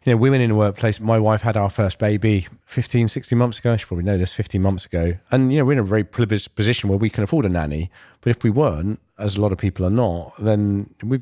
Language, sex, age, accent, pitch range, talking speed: English, male, 40-59, British, 90-110 Hz, 275 wpm